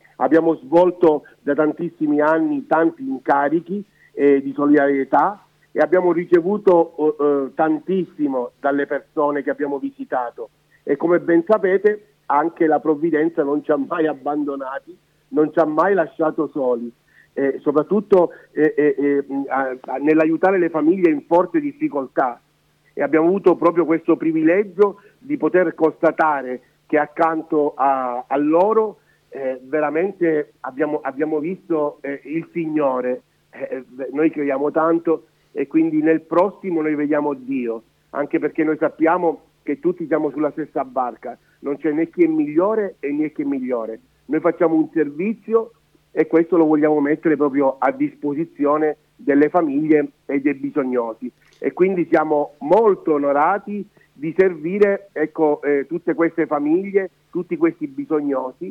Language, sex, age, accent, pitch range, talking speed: Italian, male, 50-69, native, 145-175 Hz, 140 wpm